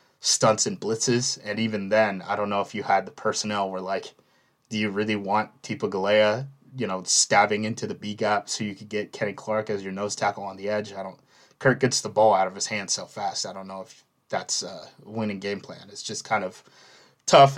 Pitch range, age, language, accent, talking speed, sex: 100-125 Hz, 20-39, English, American, 230 wpm, male